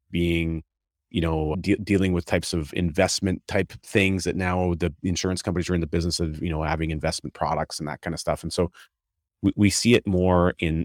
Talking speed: 215 wpm